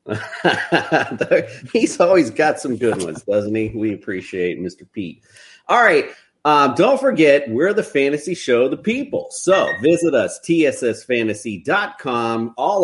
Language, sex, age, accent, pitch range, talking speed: English, male, 30-49, American, 110-160 Hz, 135 wpm